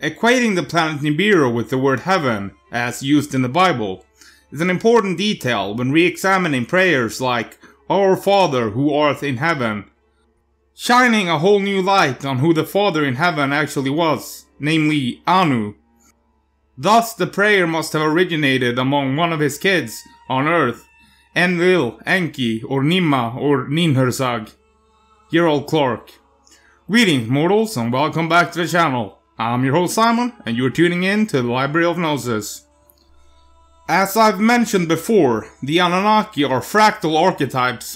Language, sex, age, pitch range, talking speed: English, male, 30-49, 125-185 Hz, 145 wpm